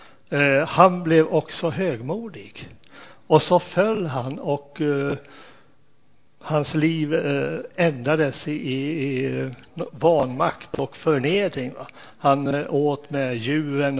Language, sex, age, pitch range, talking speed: Swedish, male, 60-79, 145-175 Hz, 105 wpm